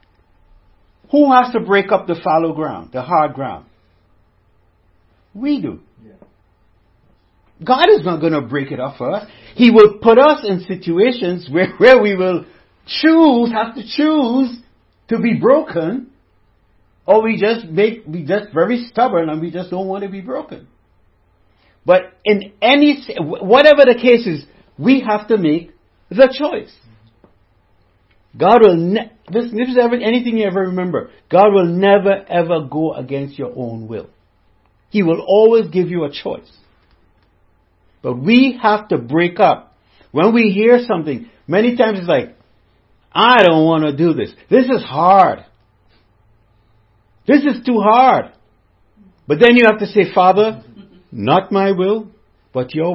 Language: English